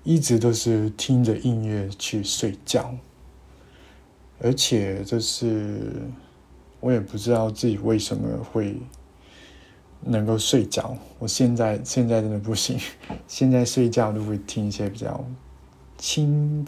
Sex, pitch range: male, 100-120 Hz